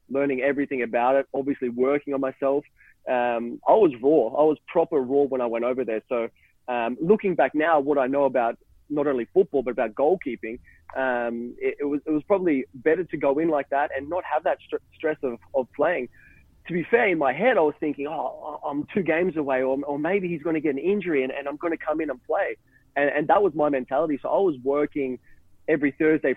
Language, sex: English, male